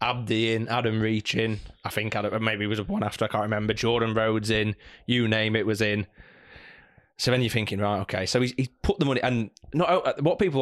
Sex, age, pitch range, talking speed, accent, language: male, 20-39, 105-125 Hz, 230 wpm, British, English